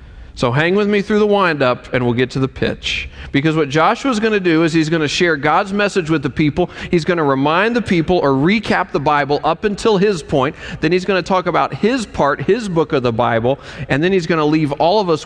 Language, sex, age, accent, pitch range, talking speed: English, male, 40-59, American, 140-185 Hz, 255 wpm